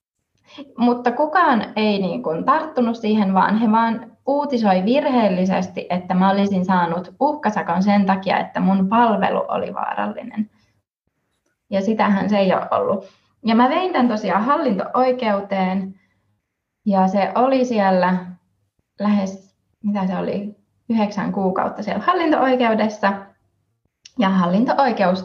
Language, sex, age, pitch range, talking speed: Finnish, female, 20-39, 190-245 Hz, 115 wpm